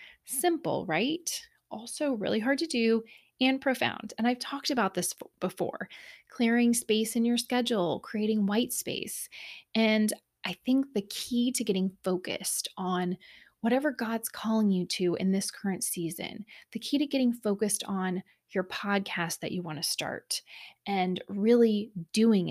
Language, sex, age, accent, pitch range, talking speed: English, female, 20-39, American, 195-240 Hz, 150 wpm